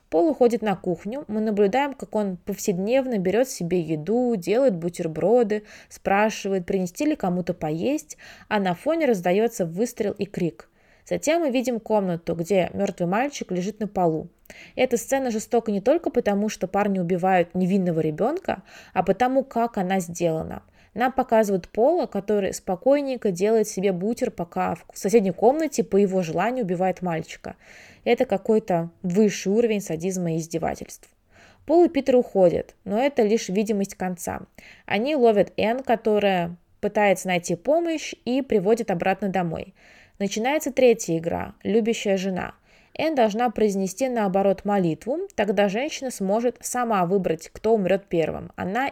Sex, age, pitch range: female, 20-39, 185-245 Hz